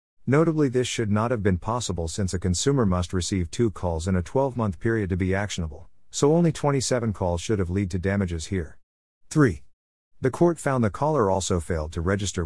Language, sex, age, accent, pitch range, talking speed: English, male, 50-69, American, 85-110 Hz, 200 wpm